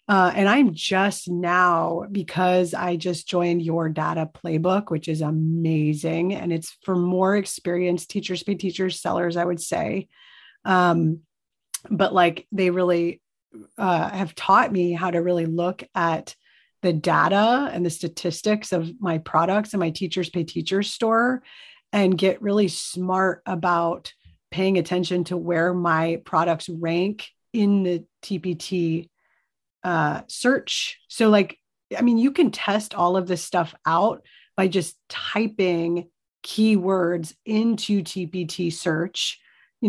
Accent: American